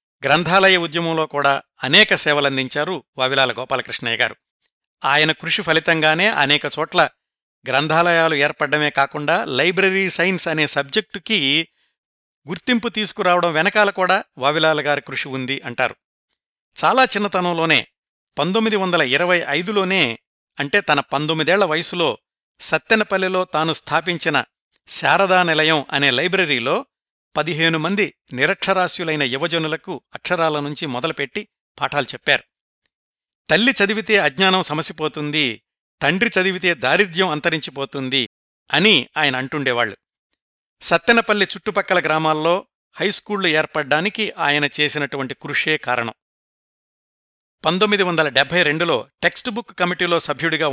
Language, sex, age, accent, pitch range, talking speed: Telugu, male, 60-79, native, 145-190 Hz, 95 wpm